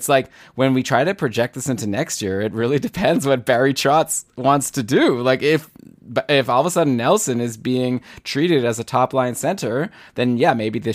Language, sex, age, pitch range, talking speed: English, male, 20-39, 105-130 Hz, 220 wpm